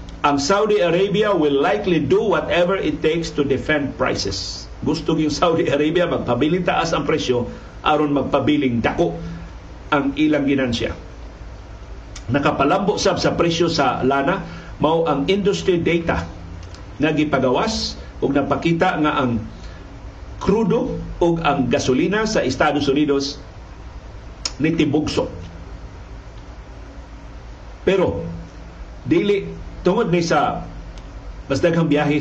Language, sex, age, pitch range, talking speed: Filipino, male, 50-69, 105-165 Hz, 105 wpm